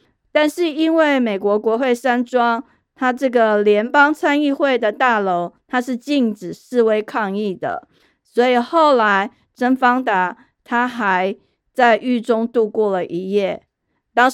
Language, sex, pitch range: Chinese, female, 210-275 Hz